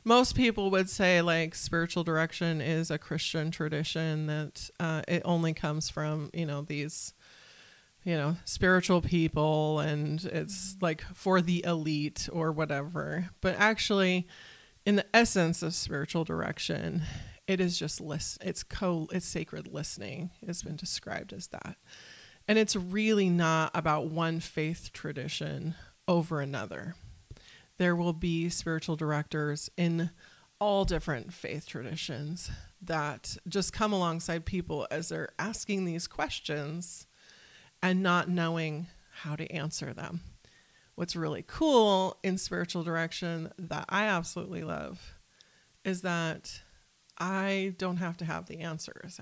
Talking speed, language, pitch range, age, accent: 135 wpm, English, 155-185 Hz, 30-49, American